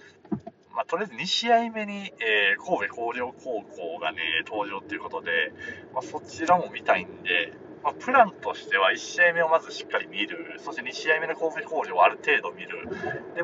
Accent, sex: native, male